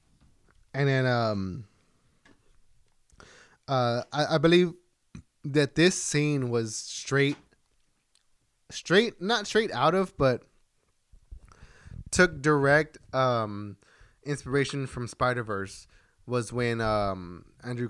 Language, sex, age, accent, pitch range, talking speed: English, male, 20-39, American, 115-155 Hz, 95 wpm